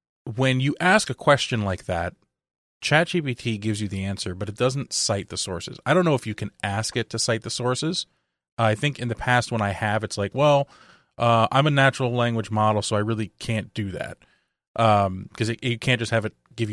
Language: English